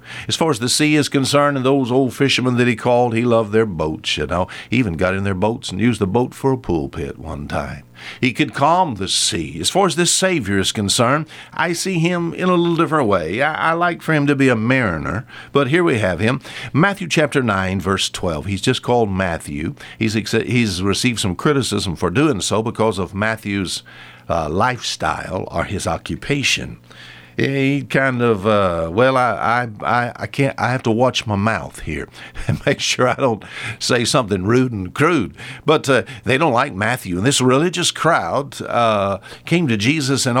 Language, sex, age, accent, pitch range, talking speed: English, male, 60-79, American, 100-140 Hz, 200 wpm